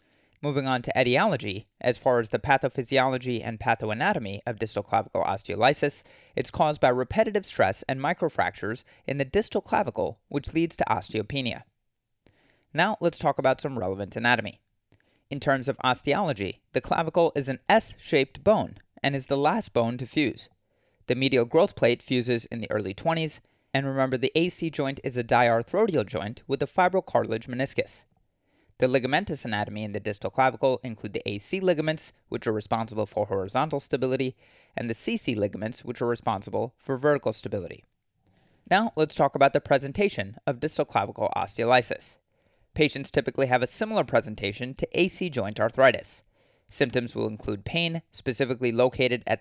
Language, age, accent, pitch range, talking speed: English, 30-49, American, 115-150 Hz, 160 wpm